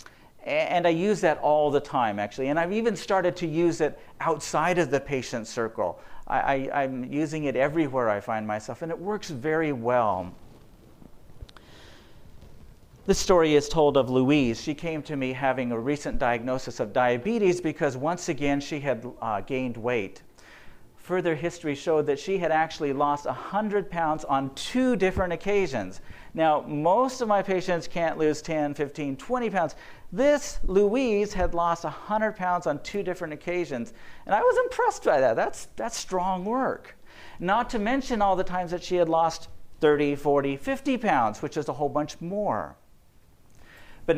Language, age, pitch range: English, 50-69, 130-180 Hz